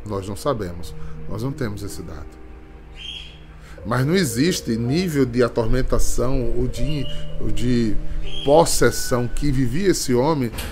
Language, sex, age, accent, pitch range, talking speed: Portuguese, male, 20-39, Brazilian, 90-150 Hz, 125 wpm